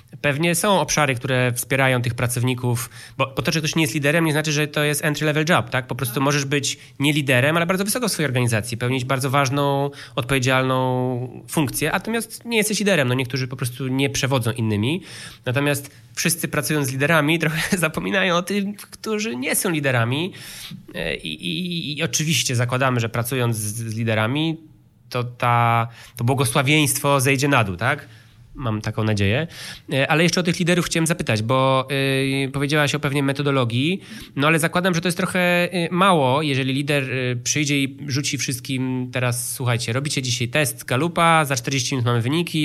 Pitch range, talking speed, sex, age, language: 125-155 Hz, 170 wpm, male, 20-39, Polish